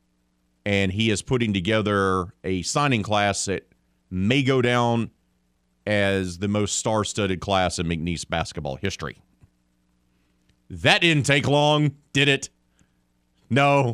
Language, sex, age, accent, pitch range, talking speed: English, male, 40-59, American, 90-125 Hz, 120 wpm